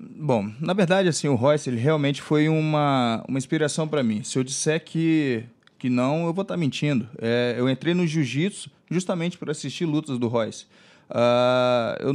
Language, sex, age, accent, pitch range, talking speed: English, male, 20-39, Brazilian, 125-165 Hz, 185 wpm